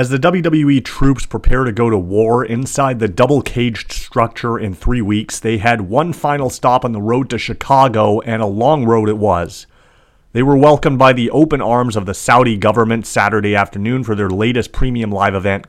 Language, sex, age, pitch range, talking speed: English, male, 30-49, 105-130 Hz, 195 wpm